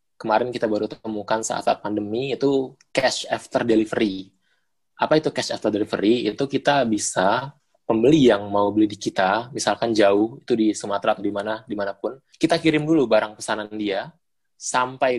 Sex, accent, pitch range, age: male, native, 105-130 Hz, 20-39